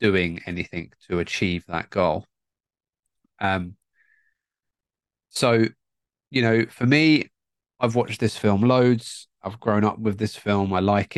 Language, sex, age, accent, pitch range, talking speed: English, male, 20-39, British, 90-115 Hz, 135 wpm